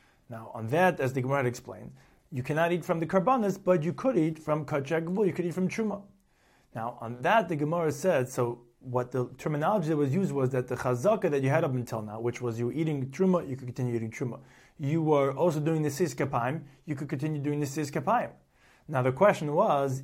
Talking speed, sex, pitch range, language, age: 220 wpm, male, 135-175 Hz, English, 30-49